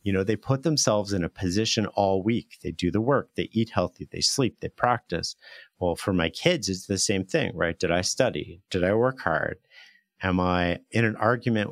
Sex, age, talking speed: male, 40-59, 215 wpm